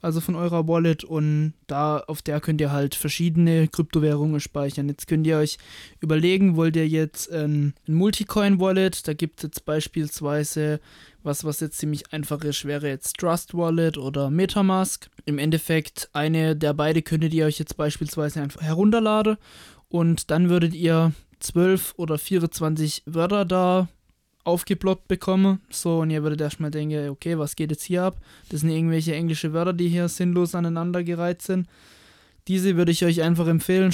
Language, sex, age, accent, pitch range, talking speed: German, male, 20-39, German, 155-175 Hz, 165 wpm